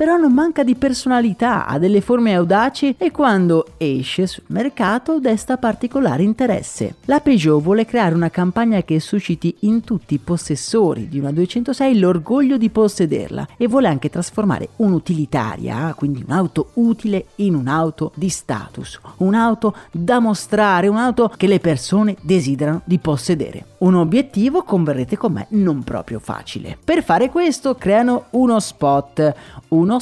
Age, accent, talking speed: 30-49, native, 145 wpm